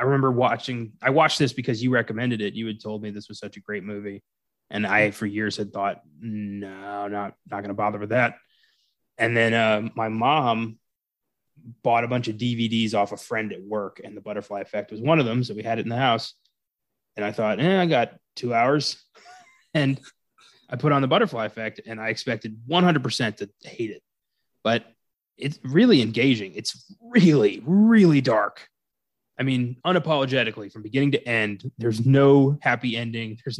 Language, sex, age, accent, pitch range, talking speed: English, male, 20-39, American, 110-135 Hz, 190 wpm